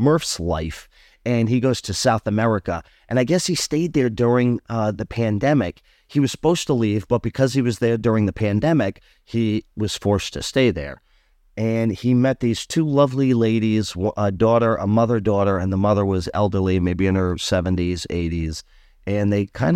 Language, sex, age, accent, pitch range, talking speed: English, male, 30-49, American, 90-115 Hz, 185 wpm